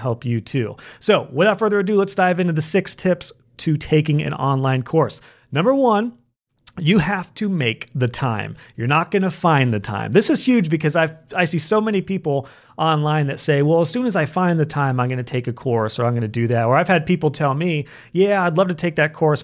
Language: English